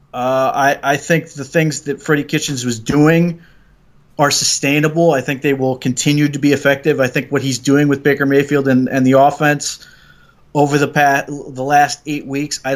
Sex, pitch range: male, 130-150 Hz